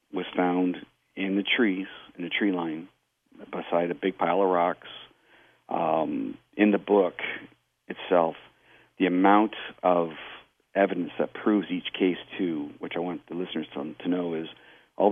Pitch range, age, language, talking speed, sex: 85-95 Hz, 50-69, English, 150 wpm, male